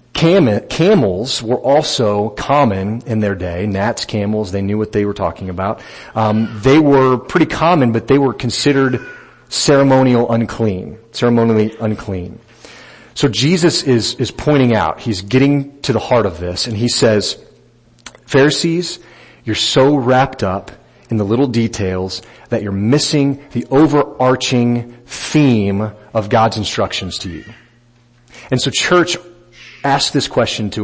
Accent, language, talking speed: American, English, 150 wpm